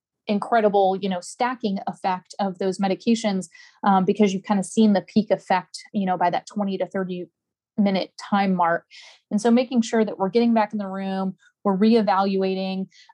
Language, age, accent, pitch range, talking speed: English, 30-49, American, 195-235 Hz, 185 wpm